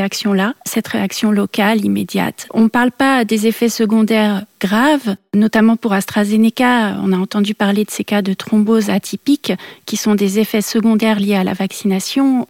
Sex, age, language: female, 40-59, French